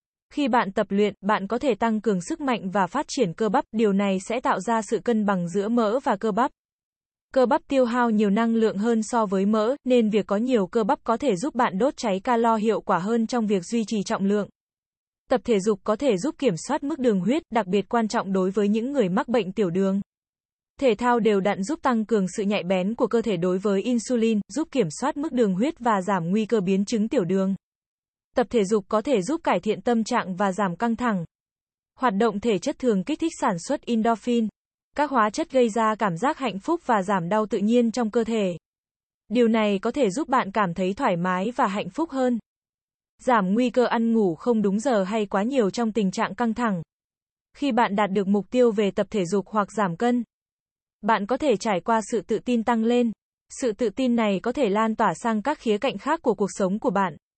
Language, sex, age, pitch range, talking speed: Vietnamese, female, 20-39, 205-245 Hz, 235 wpm